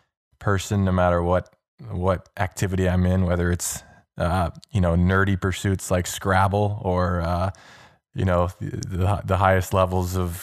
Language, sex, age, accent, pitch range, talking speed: English, male, 20-39, American, 90-105 Hz, 155 wpm